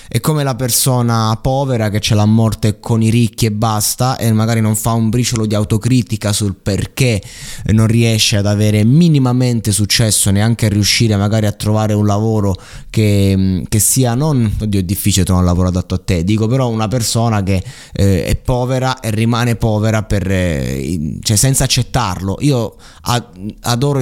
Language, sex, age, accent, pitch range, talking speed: Italian, male, 20-39, native, 95-115 Hz, 165 wpm